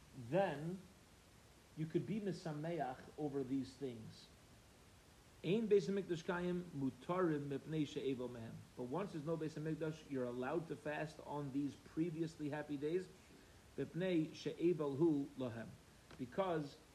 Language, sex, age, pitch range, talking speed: English, male, 40-59, 120-165 Hz, 80 wpm